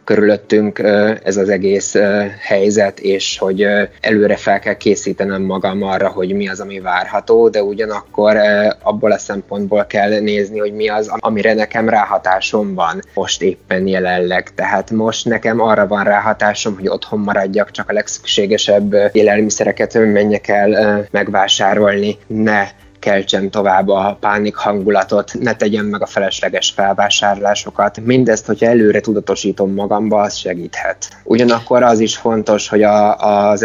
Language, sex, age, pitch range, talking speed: Hungarian, male, 20-39, 100-110 Hz, 135 wpm